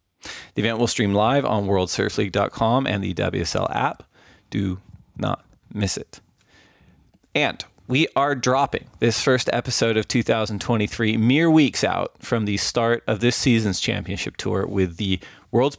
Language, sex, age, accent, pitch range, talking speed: English, male, 30-49, American, 95-120 Hz, 145 wpm